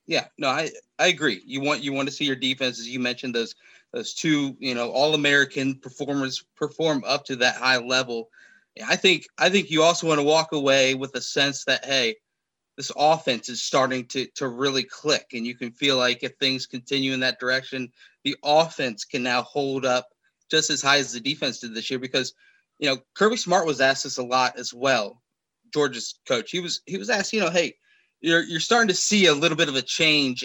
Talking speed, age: 220 wpm, 20-39